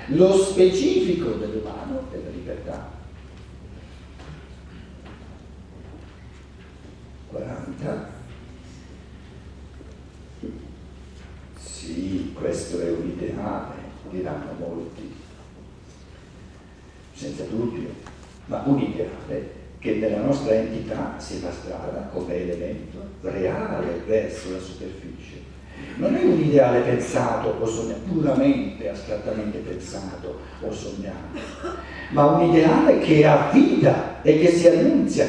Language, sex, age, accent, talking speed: Italian, male, 60-79, native, 90 wpm